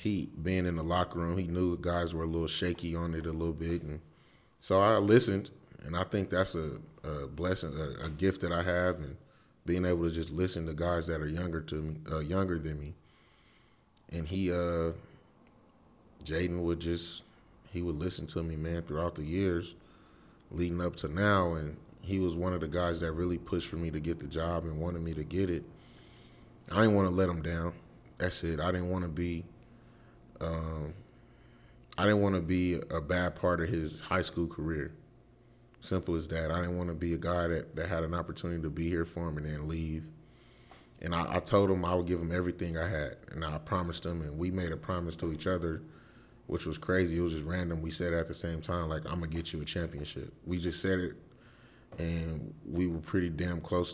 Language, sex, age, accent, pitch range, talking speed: English, male, 30-49, American, 80-90 Hz, 225 wpm